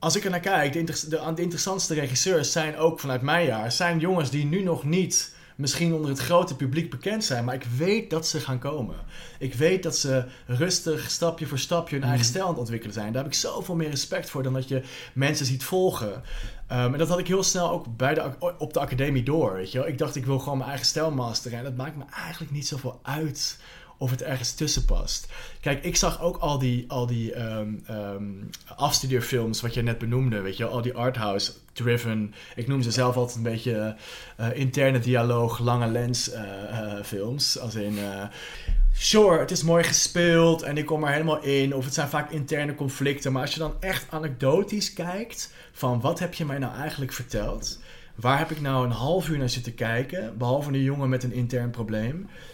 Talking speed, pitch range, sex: 215 wpm, 120-160 Hz, male